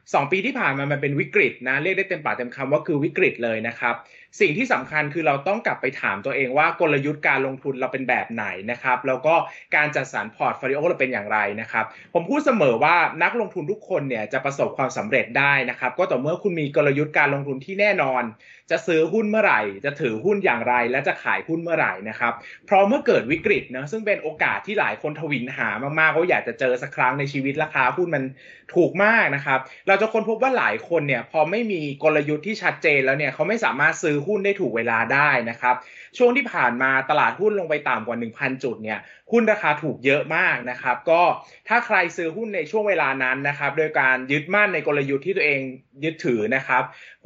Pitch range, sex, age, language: 130-190 Hz, male, 20-39, Thai